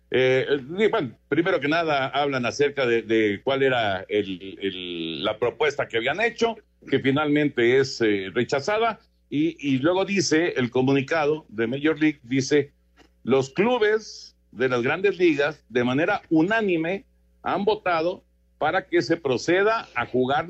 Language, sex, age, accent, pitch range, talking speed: Spanish, male, 50-69, Mexican, 115-155 Hz, 140 wpm